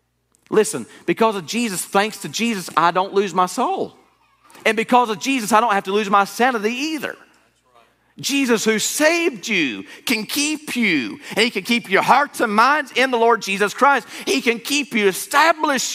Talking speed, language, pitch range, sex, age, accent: 185 wpm, English, 190-240 Hz, male, 40-59, American